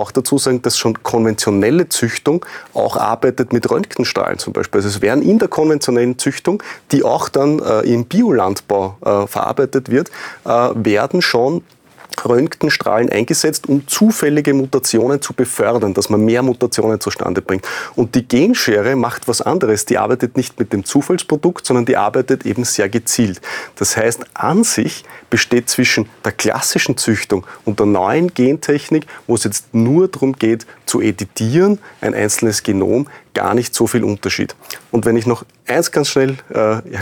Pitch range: 110-140 Hz